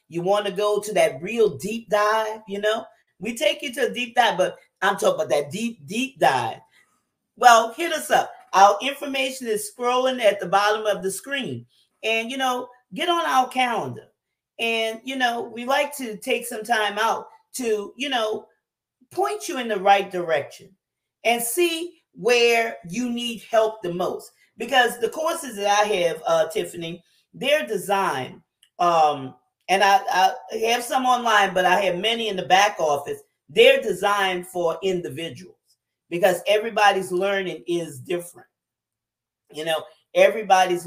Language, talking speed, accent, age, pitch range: English, 165 wpm, American, 40-59, 175-240 Hz